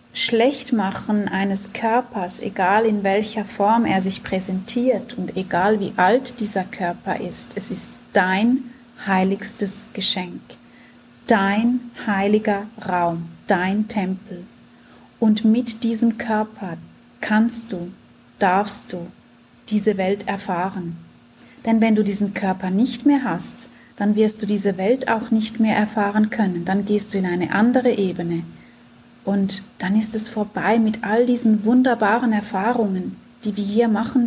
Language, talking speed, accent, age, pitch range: German, 135 wpm, German, 30-49, 195-235 Hz